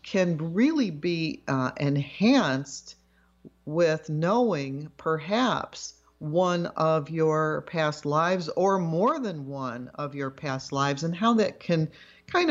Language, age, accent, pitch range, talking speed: English, 50-69, American, 145-195 Hz, 125 wpm